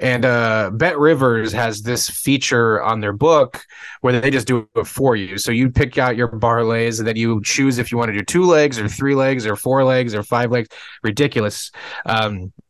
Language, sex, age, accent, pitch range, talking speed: English, male, 20-39, American, 110-135 Hz, 210 wpm